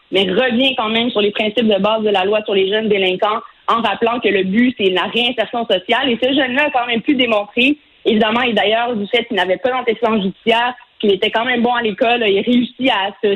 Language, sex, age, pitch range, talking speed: French, female, 30-49, 210-245 Hz, 245 wpm